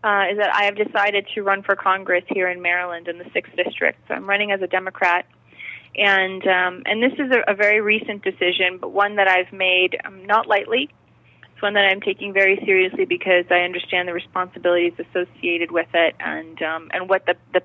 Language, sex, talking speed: English, female, 210 wpm